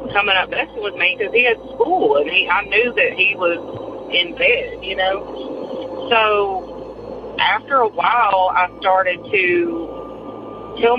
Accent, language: American, English